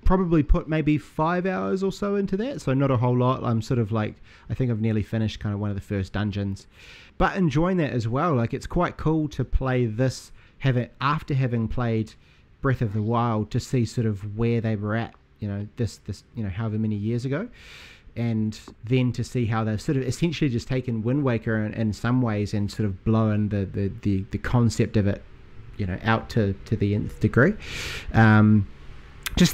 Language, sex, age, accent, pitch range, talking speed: English, male, 30-49, Australian, 105-130 Hz, 215 wpm